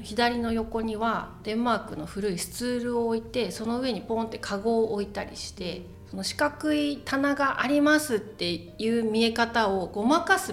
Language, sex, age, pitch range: Japanese, female, 40-59, 200-270 Hz